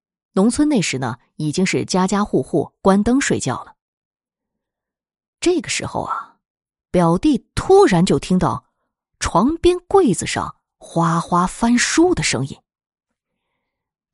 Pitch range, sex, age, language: 160-245 Hz, female, 20-39, Chinese